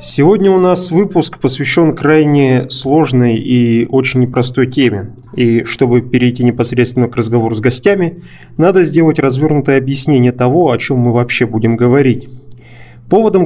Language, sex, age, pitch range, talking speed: English, male, 20-39, 120-155 Hz, 140 wpm